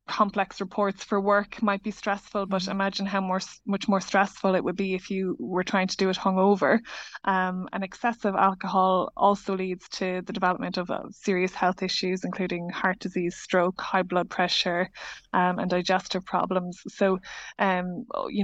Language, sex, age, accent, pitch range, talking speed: English, female, 20-39, Irish, 185-200 Hz, 170 wpm